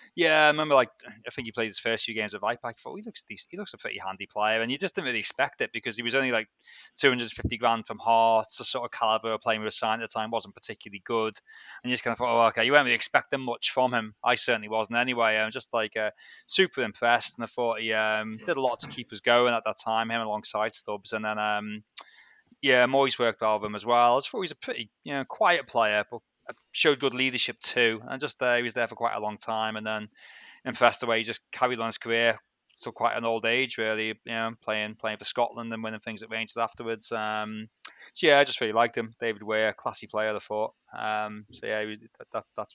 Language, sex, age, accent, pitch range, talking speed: English, male, 20-39, British, 105-120 Hz, 270 wpm